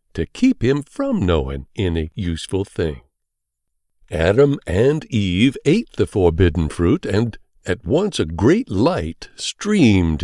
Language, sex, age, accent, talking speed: English, male, 60-79, American, 130 wpm